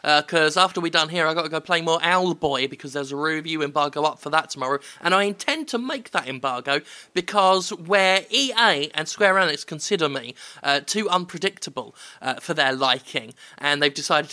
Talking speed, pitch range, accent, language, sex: 195 wpm, 140-180 Hz, British, English, male